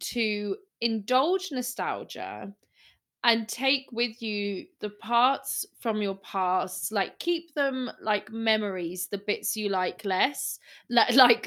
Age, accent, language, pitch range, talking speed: 20-39, British, English, 205-250 Hz, 120 wpm